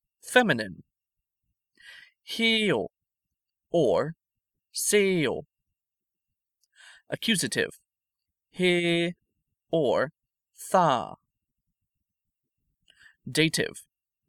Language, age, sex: English, 30-49, male